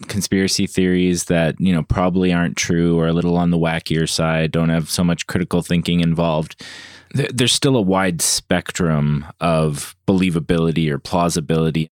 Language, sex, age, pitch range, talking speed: English, male, 20-39, 85-100 Hz, 155 wpm